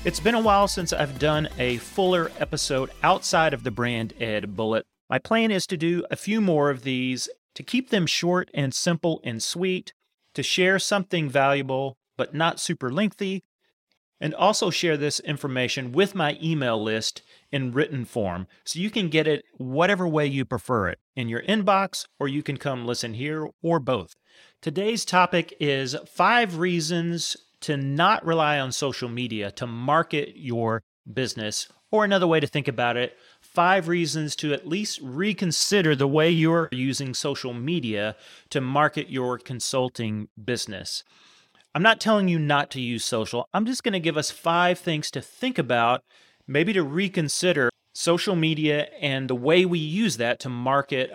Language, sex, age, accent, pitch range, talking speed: English, male, 40-59, American, 125-175 Hz, 170 wpm